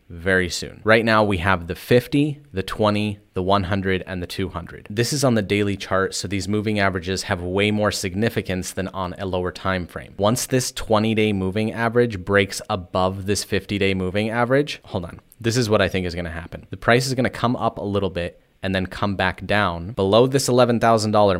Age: 30-49